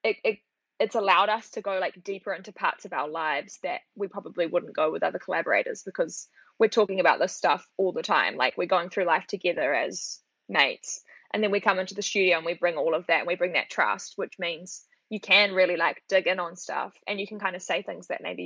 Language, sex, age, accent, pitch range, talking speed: English, female, 10-29, Australian, 185-270 Hz, 245 wpm